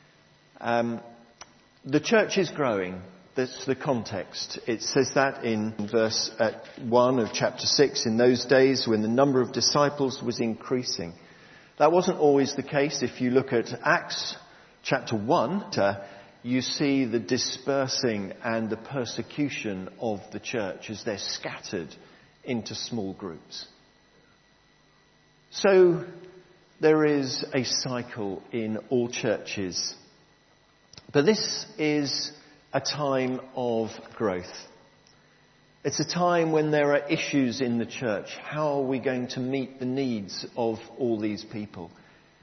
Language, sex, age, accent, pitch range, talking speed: English, male, 50-69, British, 115-145 Hz, 130 wpm